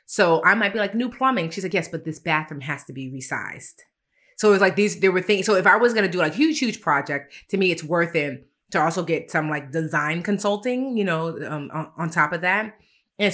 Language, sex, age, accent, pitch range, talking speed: English, female, 30-49, American, 150-180 Hz, 250 wpm